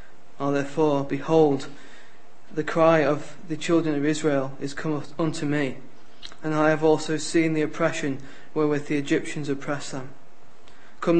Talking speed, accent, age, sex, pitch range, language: 145 wpm, British, 20-39, male, 140-160 Hz, English